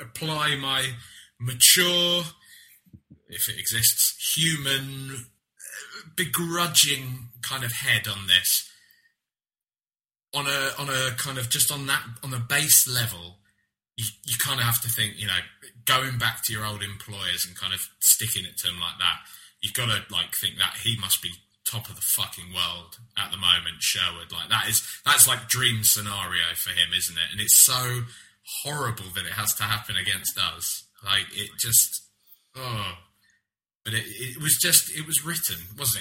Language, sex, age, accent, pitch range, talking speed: English, male, 20-39, British, 100-130 Hz, 170 wpm